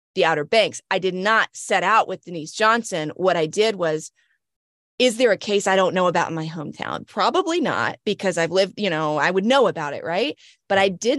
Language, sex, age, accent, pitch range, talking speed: English, female, 20-39, American, 155-185 Hz, 225 wpm